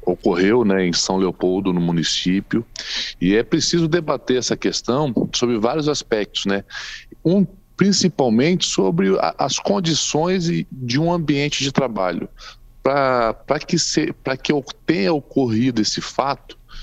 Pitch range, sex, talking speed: 105-150 Hz, male, 130 wpm